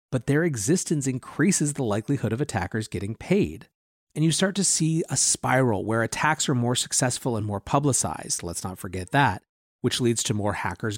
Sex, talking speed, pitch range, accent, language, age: male, 185 wpm, 110-150 Hz, American, English, 30-49